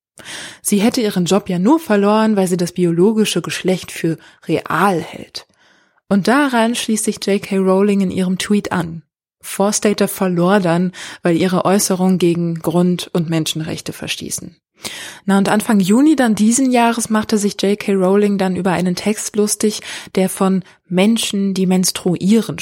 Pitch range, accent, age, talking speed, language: 180-215 Hz, German, 20-39, 150 wpm, German